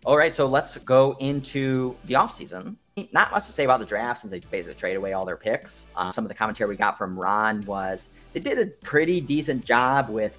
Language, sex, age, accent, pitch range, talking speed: English, male, 30-49, American, 100-130 Hz, 230 wpm